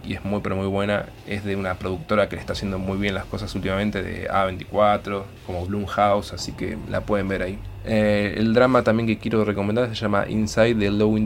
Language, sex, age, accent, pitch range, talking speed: Spanish, male, 20-39, Argentinian, 95-105 Hz, 225 wpm